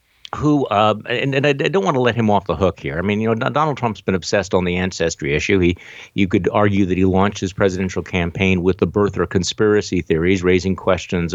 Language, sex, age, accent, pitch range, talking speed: English, male, 50-69, American, 90-110 Hz, 235 wpm